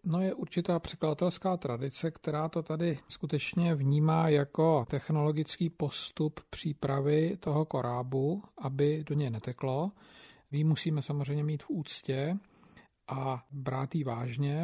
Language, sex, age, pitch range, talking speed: Slovak, male, 50-69, 135-155 Hz, 125 wpm